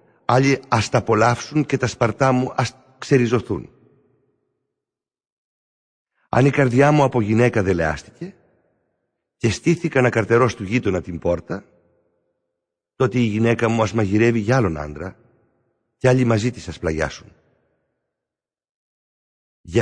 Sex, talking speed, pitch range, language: male, 120 wpm, 90-135 Hz, Greek